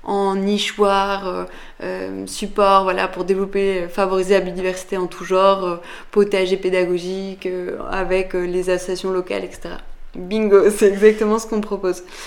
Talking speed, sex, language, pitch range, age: 145 wpm, female, French, 180-200 Hz, 20-39